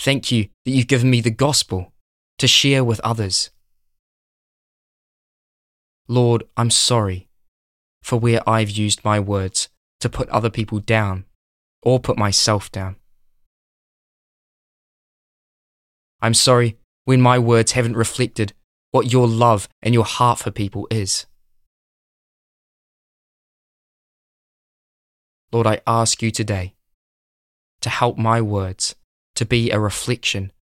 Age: 20-39